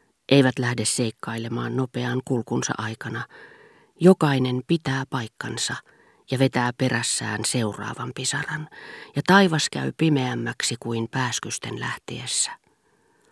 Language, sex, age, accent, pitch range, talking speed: Finnish, female, 40-59, native, 125-155 Hz, 95 wpm